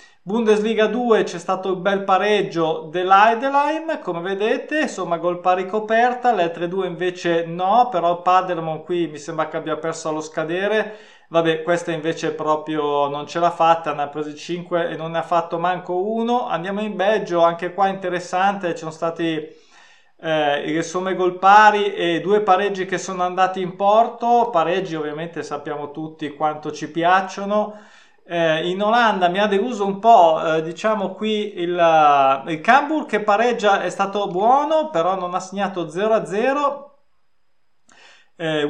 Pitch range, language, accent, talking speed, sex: 165-215 Hz, Italian, native, 160 wpm, male